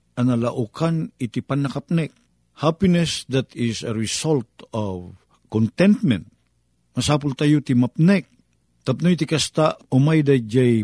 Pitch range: 110-155 Hz